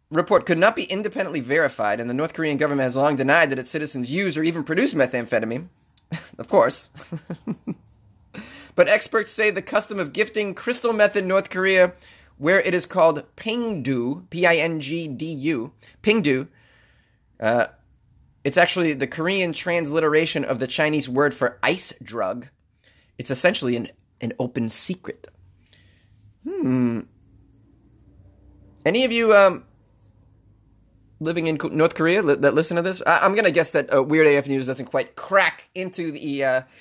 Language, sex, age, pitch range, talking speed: English, male, 30-49, 130-180 Hz, 145 wpm